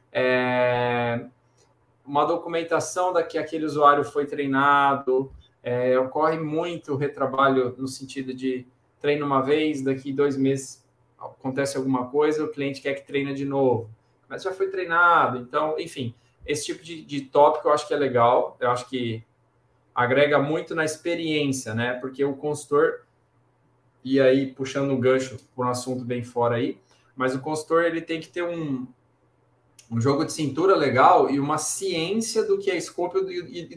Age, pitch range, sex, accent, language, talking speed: 20-39, 125-150 Hz, male, Brazilian, Portuguese, 165 wpm